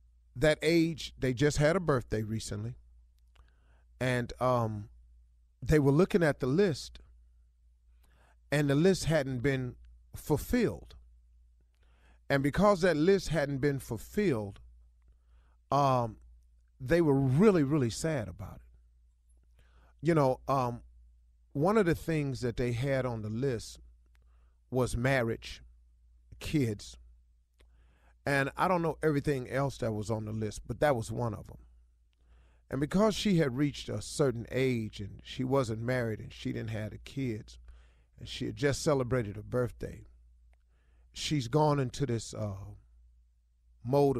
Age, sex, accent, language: 40-59, male, American, English